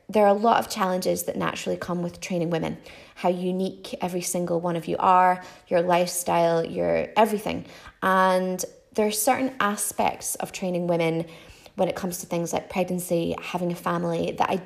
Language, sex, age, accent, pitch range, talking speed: English, female, 20-39, British, 175-195 Hz, 180 wpm